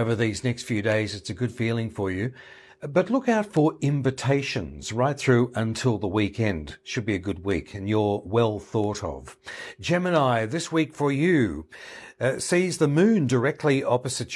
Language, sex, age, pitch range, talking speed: English, male, 60-79, 115-140 Hz, 175 wpm